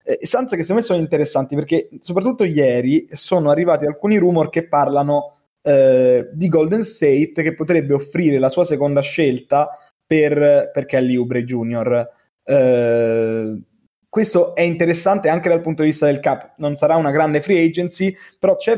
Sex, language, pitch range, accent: male, Italian, 130-170 Hz, native